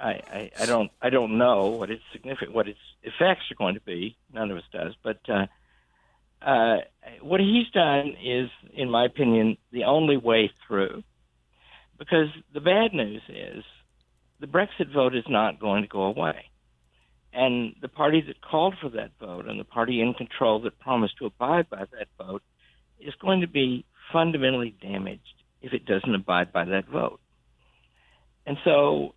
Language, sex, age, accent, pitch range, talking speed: English, male, 50-69, American, 95-150 Hz, 170 wpm